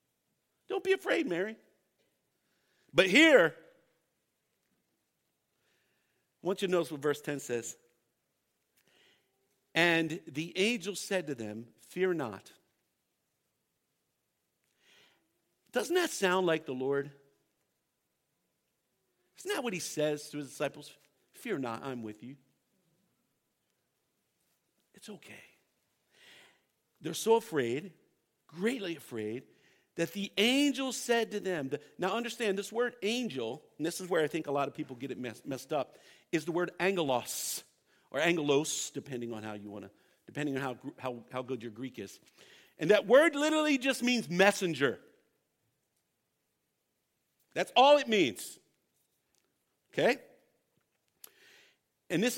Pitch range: 130-200 Hz